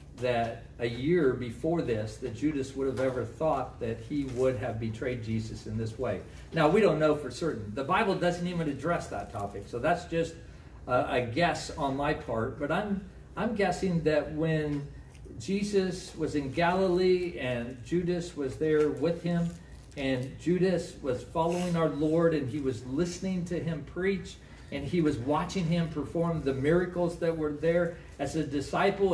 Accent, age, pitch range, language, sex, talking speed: American, 50-69, 130-175 Hz, English, male, 175 wpm